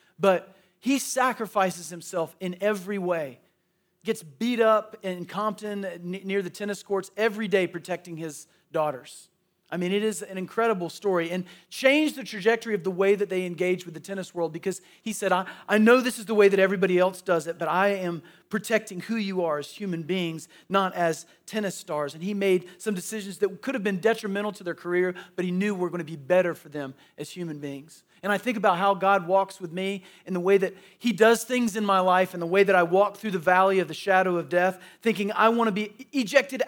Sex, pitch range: male, 170-205 Hz